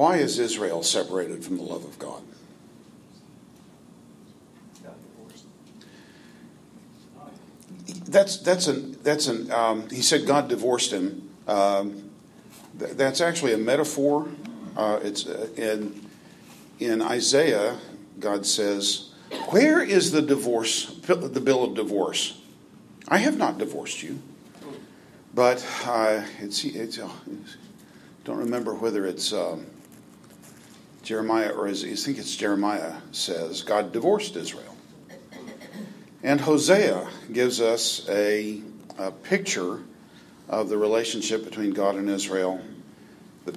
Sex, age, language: male, 50-69, English